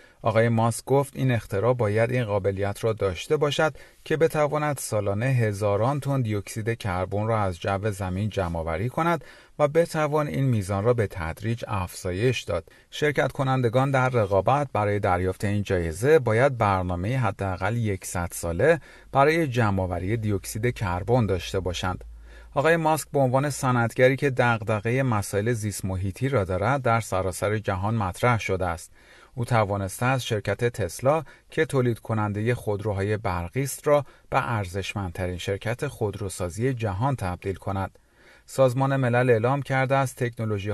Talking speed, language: 140 wpm, Persian